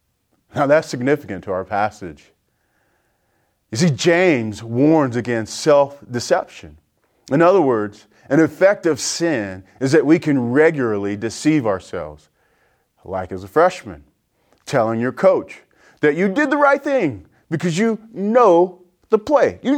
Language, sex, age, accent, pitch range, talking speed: English, male, 40-59, American, 110-185 Hz, 135 wpm